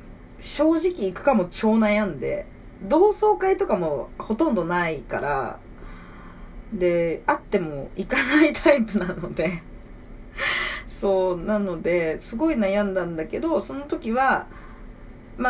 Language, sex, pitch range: Japanese, female, 175-275 Hz